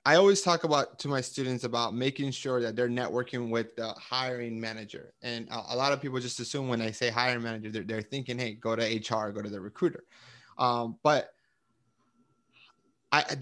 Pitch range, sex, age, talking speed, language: 115-140 Hz, male, 20-39, 195 wpm, English